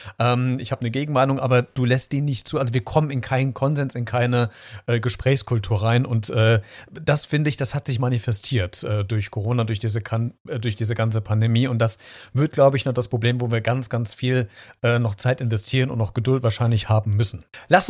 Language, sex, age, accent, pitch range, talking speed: German, male, 40-59, German, 120-140 Hz, 195 wpm